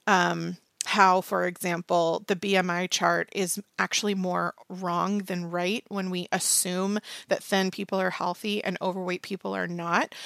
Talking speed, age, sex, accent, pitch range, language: 150 wpm, 30-49, female, American, 185-215 Hz, English